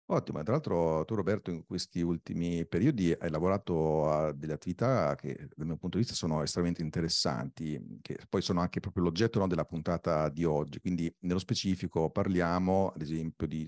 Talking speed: 180 wpm